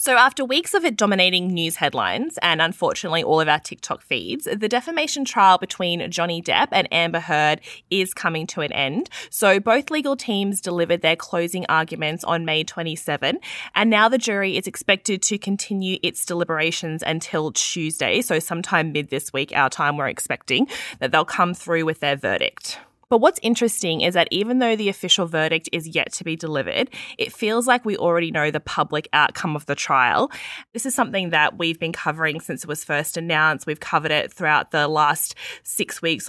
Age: 20-39